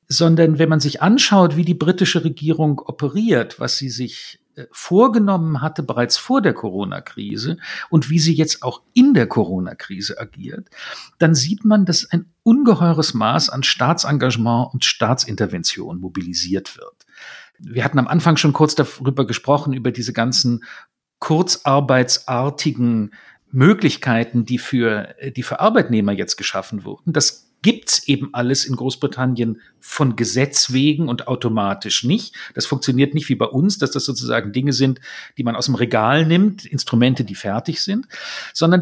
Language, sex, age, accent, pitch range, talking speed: German, male, 50-69, German, 125-165 Hz, 150 wpm